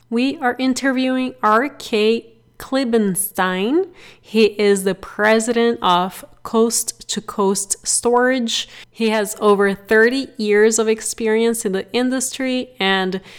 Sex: female